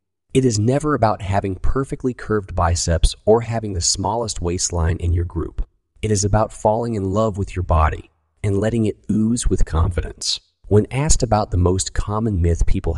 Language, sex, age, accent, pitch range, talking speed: English, male, 30-49, American, 85-110 Hz, 180 wpm